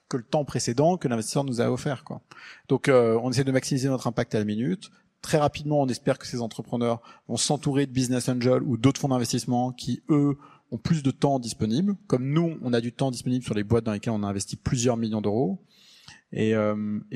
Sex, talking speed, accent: male, 225 wpm, French